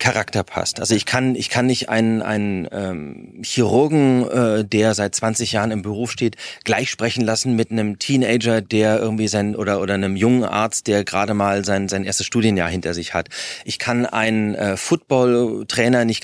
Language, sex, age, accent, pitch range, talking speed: German, male, 30-49, German, 105-125 Hz, 185 wpm